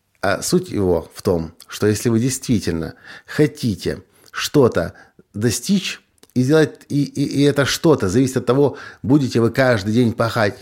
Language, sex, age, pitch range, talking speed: Russian, male, 50-69, 95-130 Hz, 155 wpm